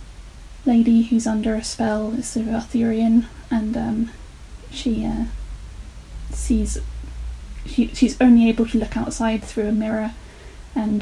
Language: English